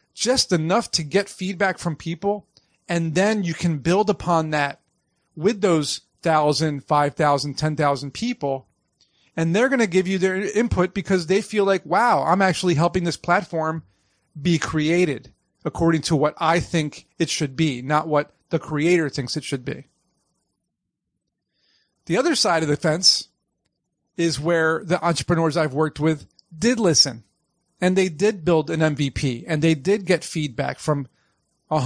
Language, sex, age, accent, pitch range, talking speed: English, male, 40-59, American, 150-180 Hz, 160 wpm